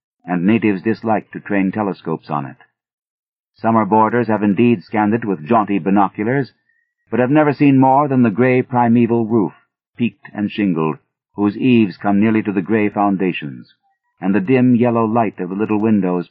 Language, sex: English, male